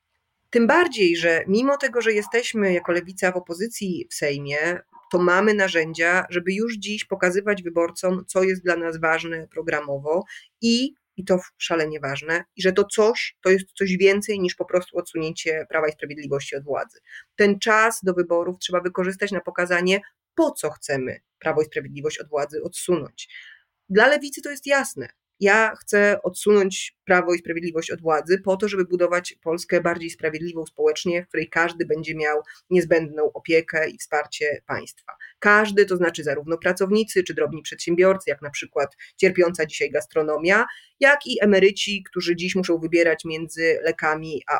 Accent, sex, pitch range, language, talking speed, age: native, female, 160-210 Hz, Polish, 165 wpm, 30-49